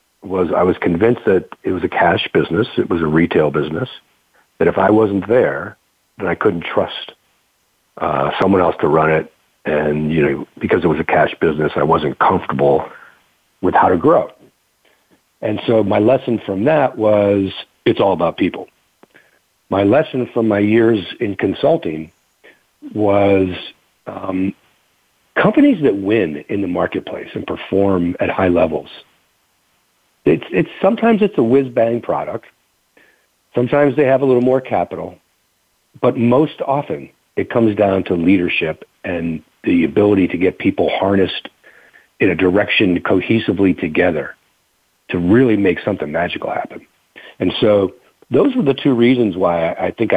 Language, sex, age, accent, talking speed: English, male, 50-69, American, 155 wpm